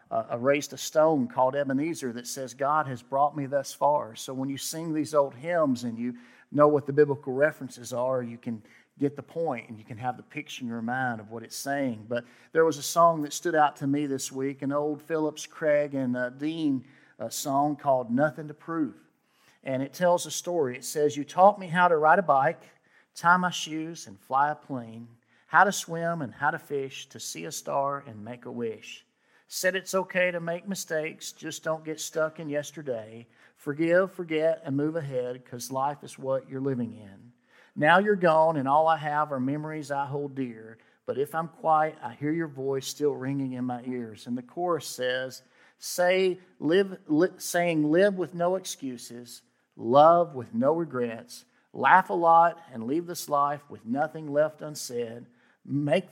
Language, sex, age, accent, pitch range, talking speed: English, male, 50-69, American, 125-160 Hz, 200 wpm